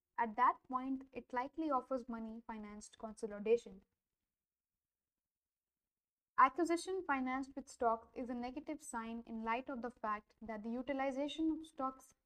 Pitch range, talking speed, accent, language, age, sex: 230-270 Hz, 130 wpm, Indian, English, 20-39, female